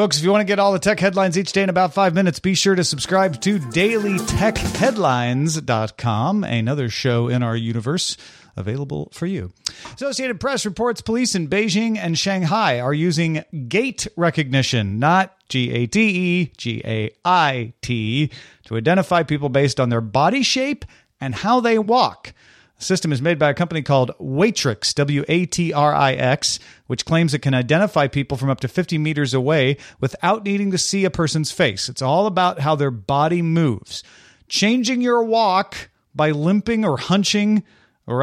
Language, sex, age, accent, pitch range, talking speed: English, male, 40-59, American, 135-195 Hz, 155 wpm